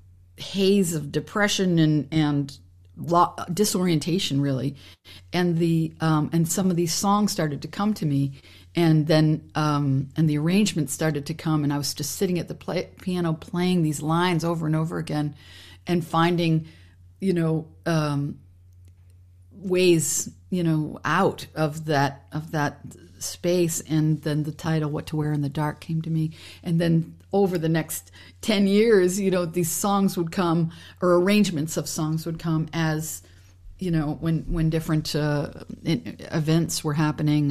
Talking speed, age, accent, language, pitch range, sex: 165 wpm, 50-69, American, English, 145-165 Hz, female